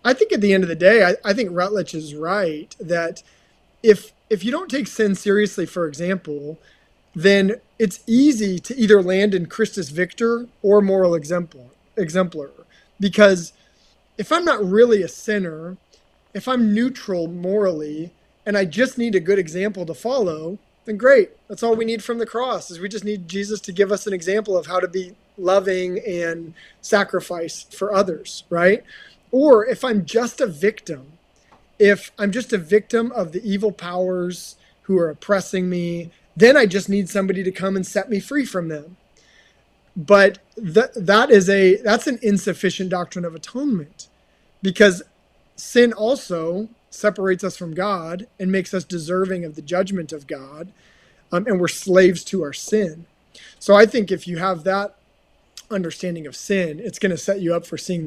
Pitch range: 175-210 Hz